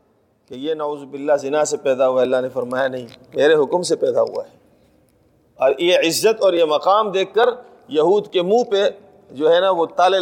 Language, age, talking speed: Urdu, 40-59, 210 wpm